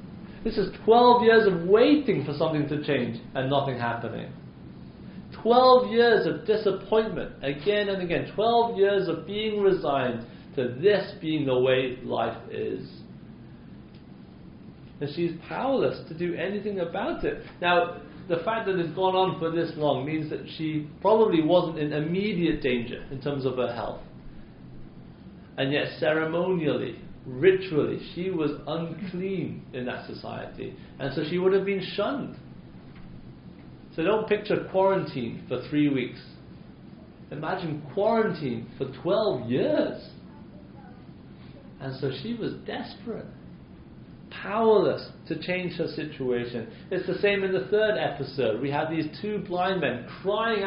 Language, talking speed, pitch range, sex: English, 135 wpm, 140-200 Hz, male